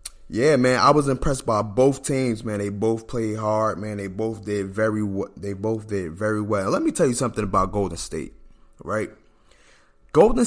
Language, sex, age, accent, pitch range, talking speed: English, male, 20-39, American, 100-130 Hz, 200 wpm